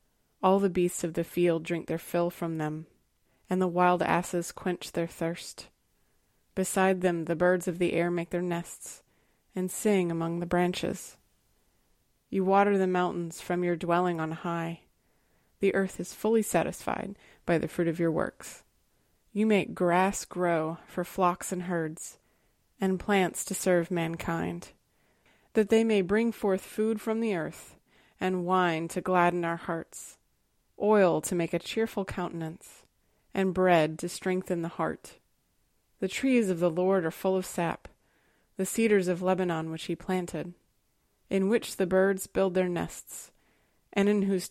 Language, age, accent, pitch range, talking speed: English, 30-49, American, 170-195 Hz, 160 wpm